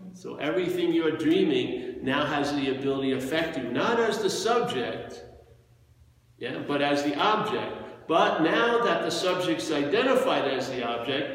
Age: 50-69